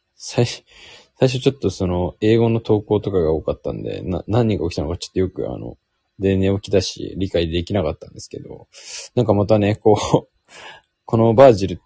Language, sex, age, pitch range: Japanese, male, 20-39, 90-110 Hz